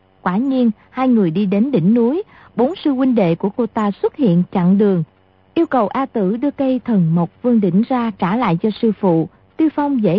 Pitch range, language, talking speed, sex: 190-260 Hz, Vietnamese, 225 wpm, female